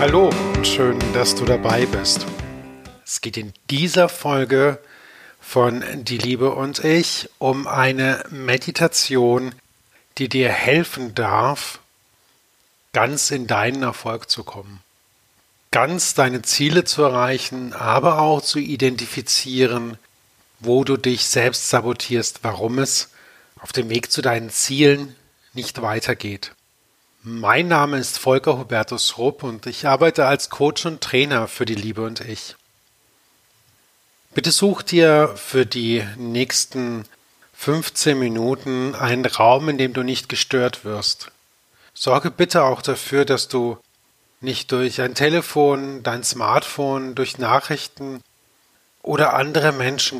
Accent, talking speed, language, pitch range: German, 125 wpm, German, 115-140 Hz